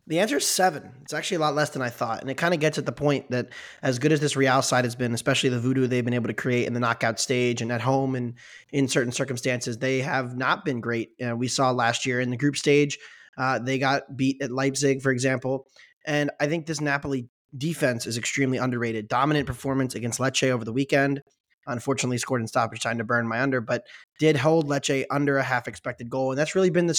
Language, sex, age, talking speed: English, male, 20-39, 240 wpm